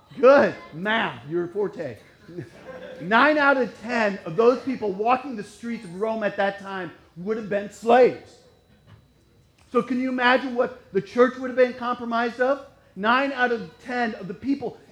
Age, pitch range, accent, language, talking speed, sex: 40-59, 170-250 Hz, American, English, 175 wpm, male